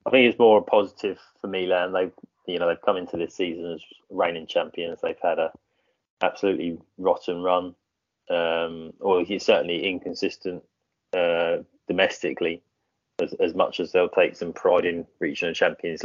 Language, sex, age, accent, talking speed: English, male, 20-39, British, 160 wpm